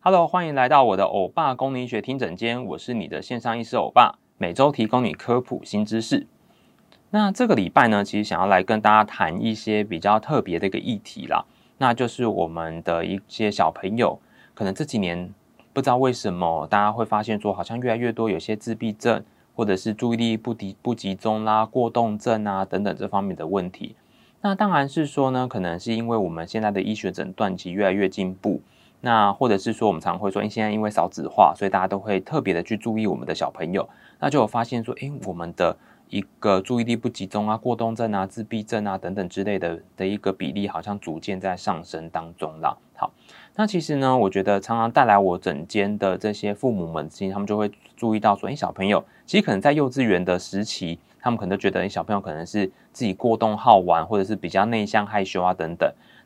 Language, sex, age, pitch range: English, male, 30-49, 95-120 Hz